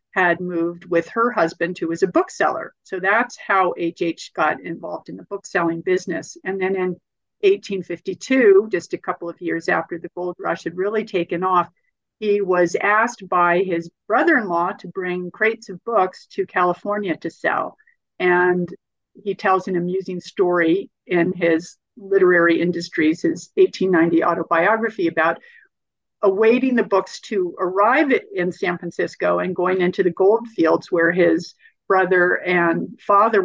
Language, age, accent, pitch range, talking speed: English, 50-69, American, 175-210 Hz, 150 wpm